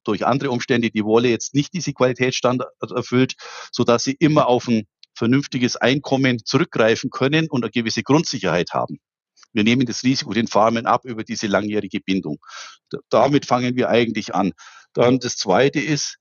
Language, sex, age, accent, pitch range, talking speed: German, male, 50-69, German, 115-135 Hz, 165 wpm